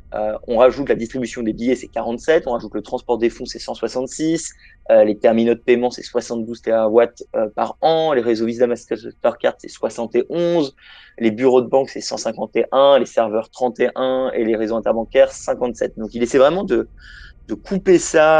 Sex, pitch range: male, 110-135 Hz